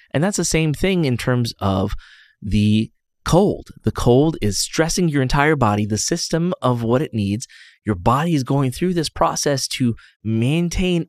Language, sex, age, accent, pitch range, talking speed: English, male, 20-39, American, 110-145 Hz, 175 wpm